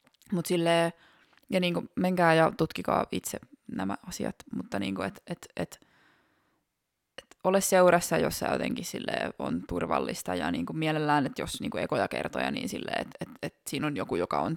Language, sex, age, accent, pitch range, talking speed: Finnish, female, 20-39, native, 155-210 Hz, 165 wpm